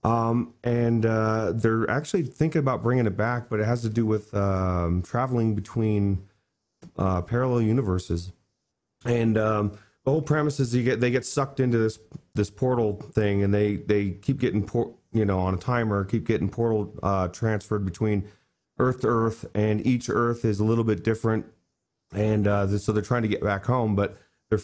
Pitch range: 100-120 Hz